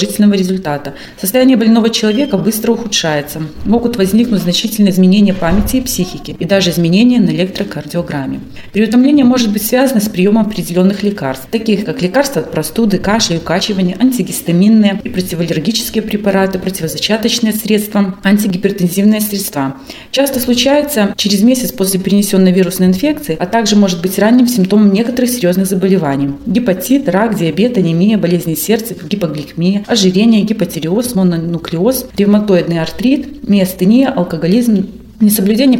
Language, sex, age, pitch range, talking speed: Russian, female, 30-49, 180-225 Hz, 120 wpm